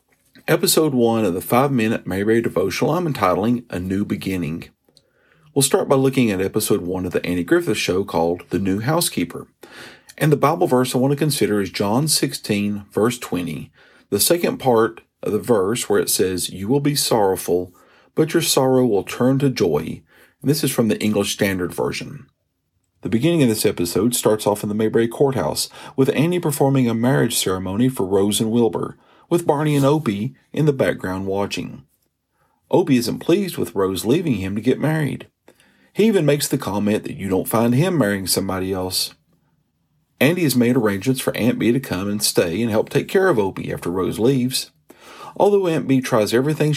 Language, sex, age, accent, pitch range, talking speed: English, male, 40-59, American, 100-140 Hz, 185 wpm